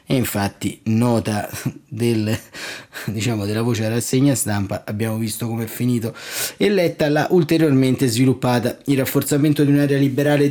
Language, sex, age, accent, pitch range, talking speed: Italian, male, 30-49, native, 115-140 Hz, 145 wpm